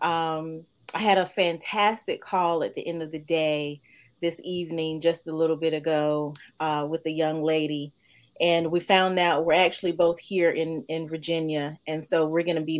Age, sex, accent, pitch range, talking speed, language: 30-49, female, American, 150-180 Hz, 190 wpm, English